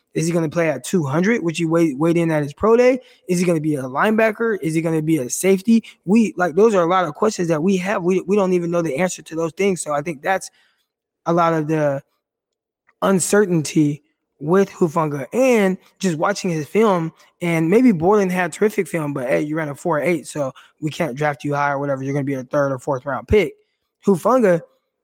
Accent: American